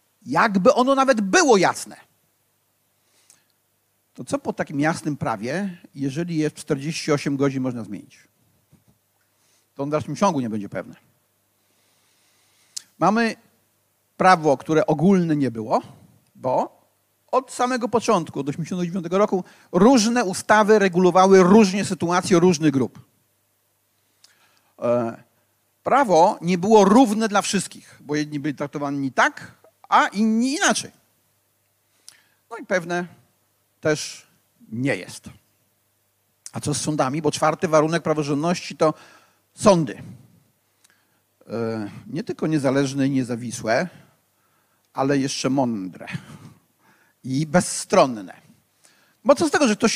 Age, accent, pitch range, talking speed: 50-69, native, 120-195 Hz, 110 wpm